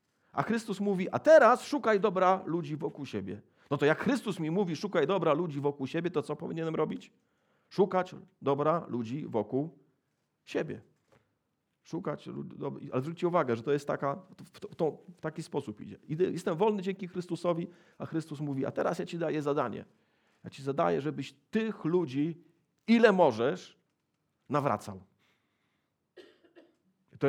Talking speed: 155 wpm